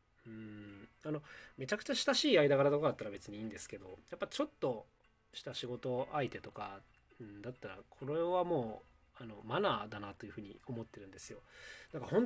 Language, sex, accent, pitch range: Japanese, male, native, 110-180 Hz